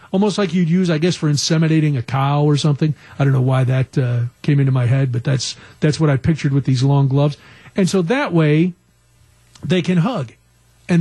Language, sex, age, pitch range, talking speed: English, male, 40-59, 145-200 Hz, 220 wpm